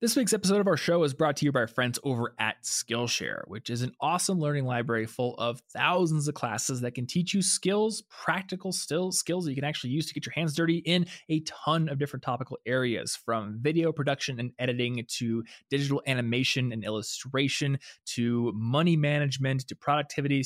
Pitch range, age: 125-155 Hz, 20-39